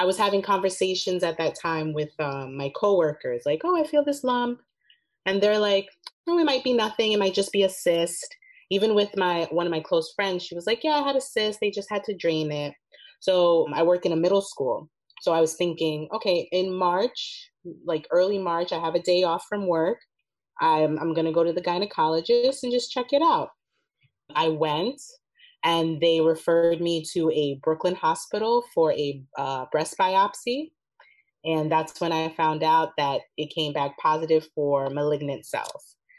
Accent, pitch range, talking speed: American, 155-210 Hz, 200 wpm